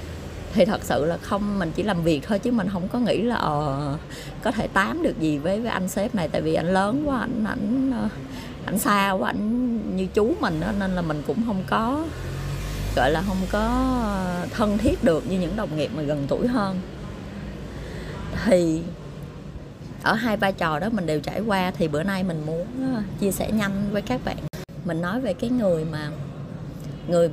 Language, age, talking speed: Vietnamese, 20-39, 200 wpm